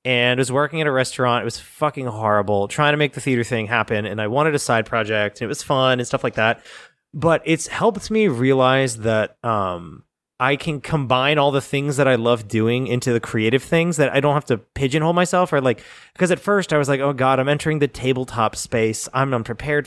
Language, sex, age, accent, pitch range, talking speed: English, male, 30-49, American, 125-165 Hz, 235 wpm